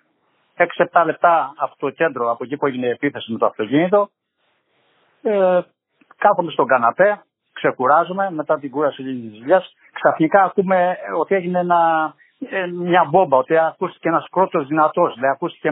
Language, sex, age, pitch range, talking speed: Greek, male, 60-79, 145-190 Hz, 145 wpm